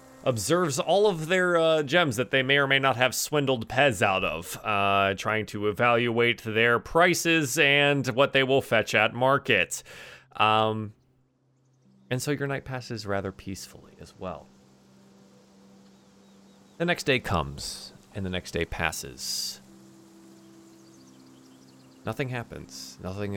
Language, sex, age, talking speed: English, male, 30-49, 135 wpm